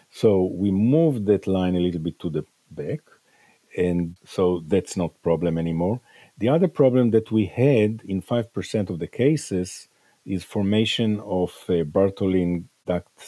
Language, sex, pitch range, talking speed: English, male, 90-115 Hz, 160 wpm